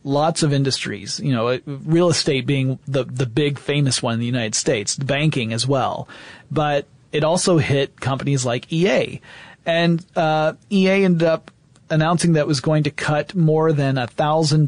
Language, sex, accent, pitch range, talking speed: English, male, American, 130-160 Hz, 175 wpm